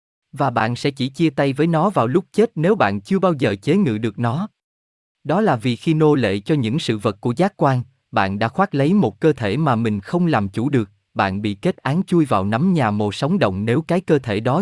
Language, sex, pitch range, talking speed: Vietnamese, male, 110-155 Hz, 255 wpm